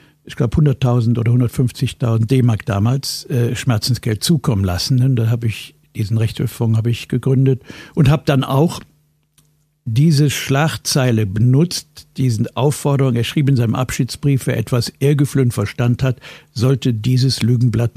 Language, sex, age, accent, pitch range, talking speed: German, male, 60-79, German, 125-150 Hz, 135 wpm